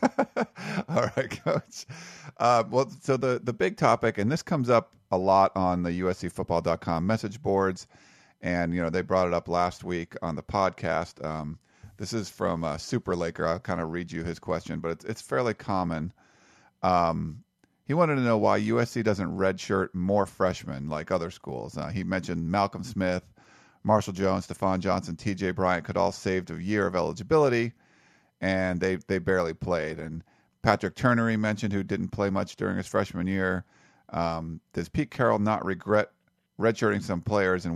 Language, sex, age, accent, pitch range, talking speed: English, male, 40-59, American, 90-110 Hz, 175 wpm